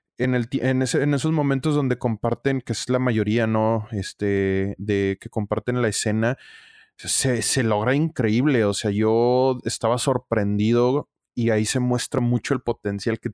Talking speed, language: 165 wpm, Spanish